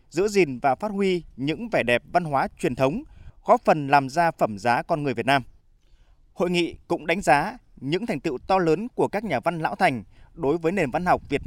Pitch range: 135-185 Hz